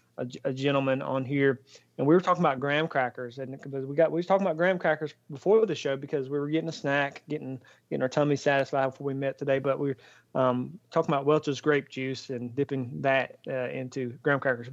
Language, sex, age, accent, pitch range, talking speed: English, male, 30-49, American, 135-155 Hz, 220 wpm